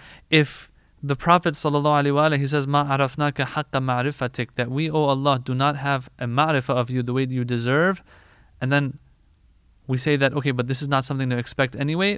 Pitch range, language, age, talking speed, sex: 125-155 Hz, English, 20-39, 195 wpm, male